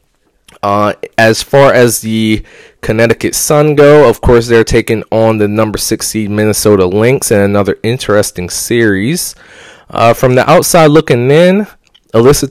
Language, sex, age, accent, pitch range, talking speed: English, male, 20-39, American, 100-120 Hz, 150 wpm